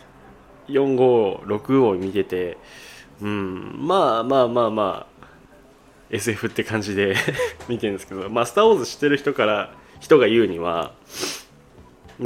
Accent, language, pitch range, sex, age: native, Japanese, 90-115 Hz, male, 20-39